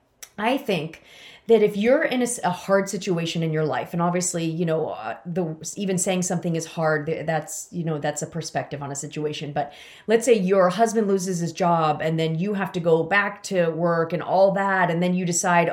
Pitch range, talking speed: 170-205 Hz, 215 wpm